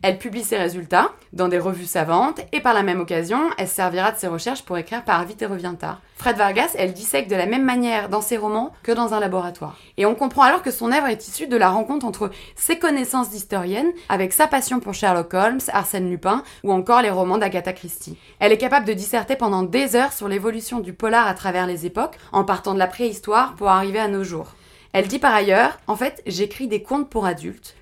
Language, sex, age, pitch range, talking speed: French, female, 20-39, 190-235 Hz, 230 wpm